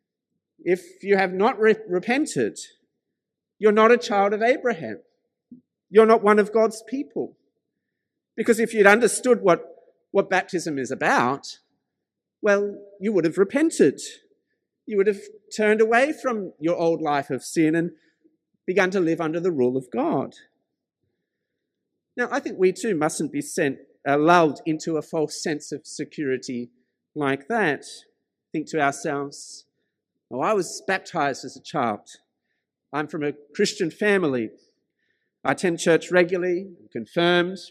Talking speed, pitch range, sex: 145 wpm, 155-220 Hz, male